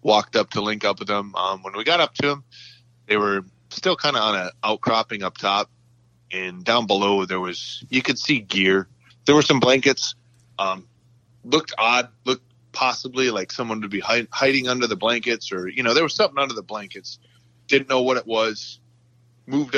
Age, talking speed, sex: 20-39, 195 wpm, male